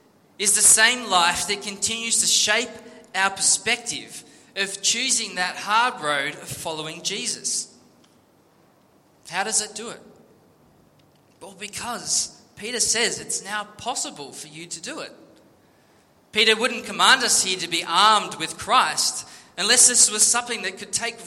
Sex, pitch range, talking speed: male, 190-230 Hz, 145 wpm